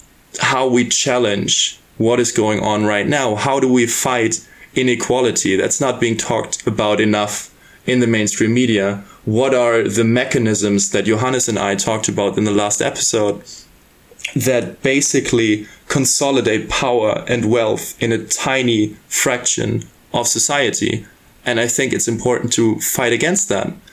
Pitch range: 105-120 Hz